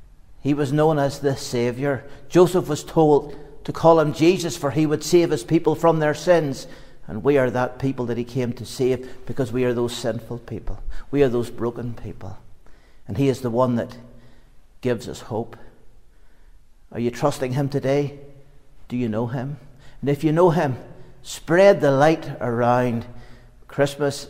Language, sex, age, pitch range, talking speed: English, male, 60-79, 120-140 Hz, 175 wpm